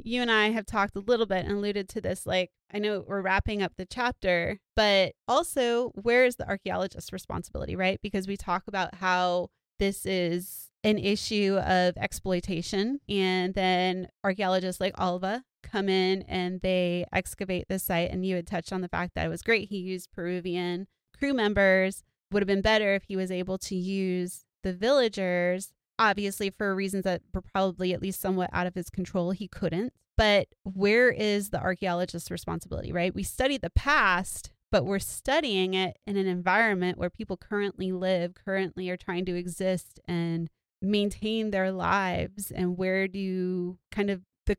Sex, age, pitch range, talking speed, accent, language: female, 20-39, 180-200 Hz, 175 wpm, American, English